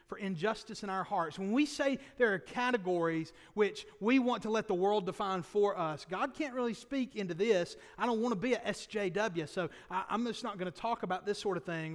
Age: 30-49